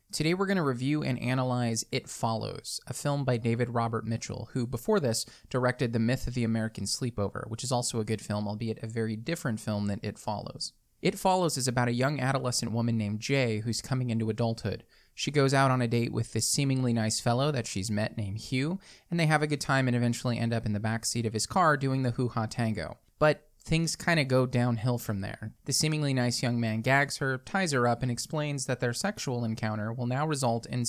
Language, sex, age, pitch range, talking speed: English, male, 20-39, 115-145 Hz, 225 wpm